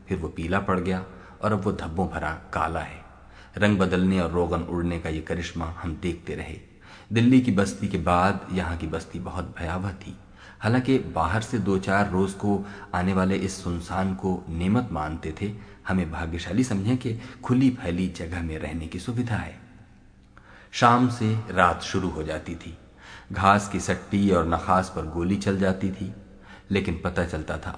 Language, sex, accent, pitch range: Hindi, male, native, 85-100 Hz